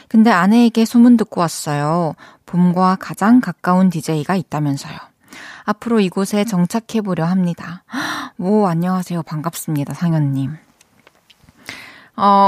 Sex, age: female, 20-39